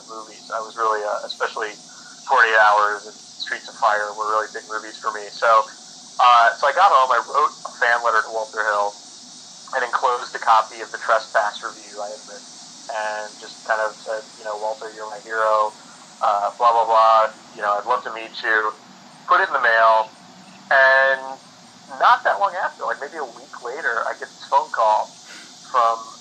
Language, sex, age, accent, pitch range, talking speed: English, male, 30-49, American, 110-120 Hz, 185 wpm